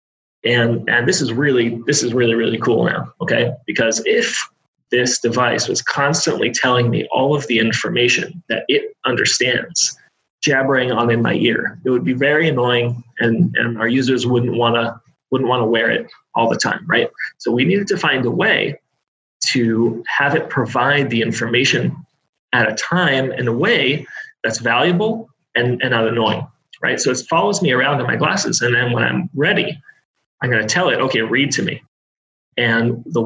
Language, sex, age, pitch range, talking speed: English, male, 30-49, 115-150 Hz, 180 wpm